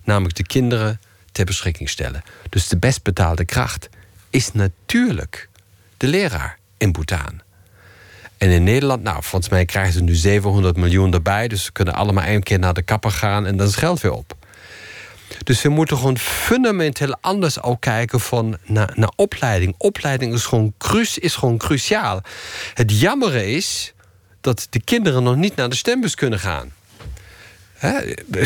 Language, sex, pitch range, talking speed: Dutch, male, 95-130 Hz, 165 wpm